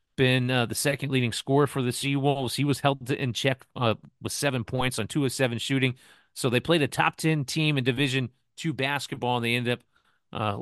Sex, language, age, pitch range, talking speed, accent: male, English, 30-49, 110-135 Hz, 220 wpm, American